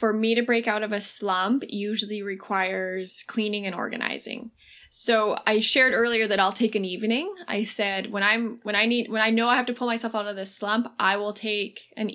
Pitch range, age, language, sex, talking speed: 200-235 Hz, 20-39, English, female, 220 wpm